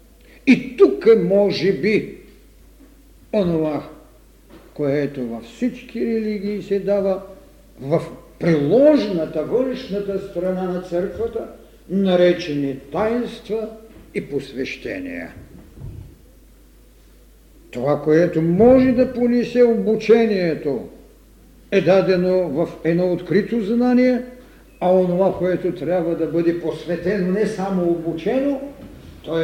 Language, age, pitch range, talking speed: Bulgarian, 50-69, 155-215 Hz, 90 wpm